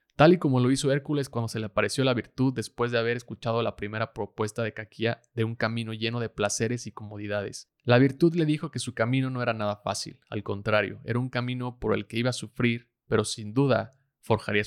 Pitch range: 105-125 Hz